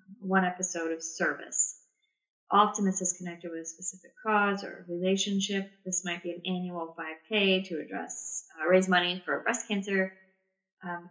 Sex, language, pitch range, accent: female, English, 175-205 Hz, American